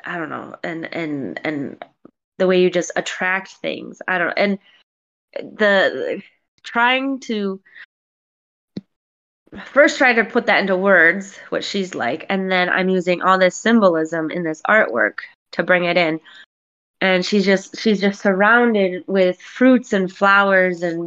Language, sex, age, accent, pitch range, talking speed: English, female, 20-39, American, 185-240 Hz, 150 wpm